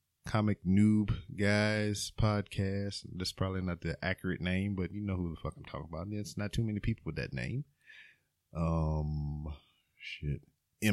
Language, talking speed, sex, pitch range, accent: English, 160 wpm, male, 85-100 Hz, American